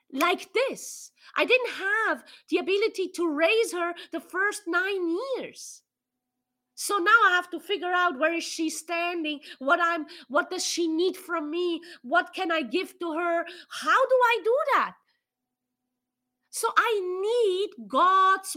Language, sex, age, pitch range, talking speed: English, female, 30-49, 250-365 Hz, 155 wpm